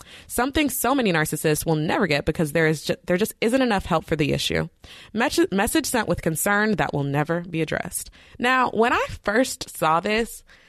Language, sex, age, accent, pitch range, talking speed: English, female, 20-39, American, 150-205 Hz, 185 wpm